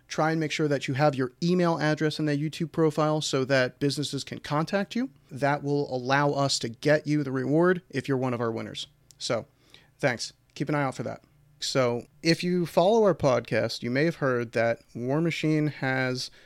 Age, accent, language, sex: 30-49, American, English, male